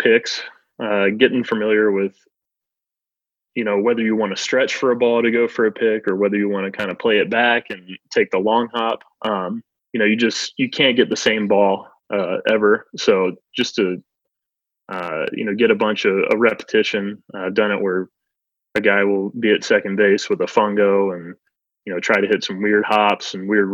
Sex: male